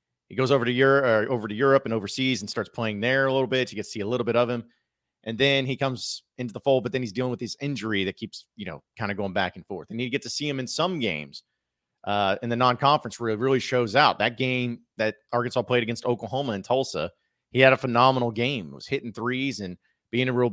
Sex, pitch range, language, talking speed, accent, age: male, 115-140 Hz, English, 255 wpm, American, 30-49